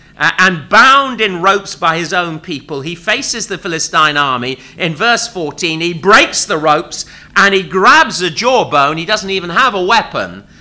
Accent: British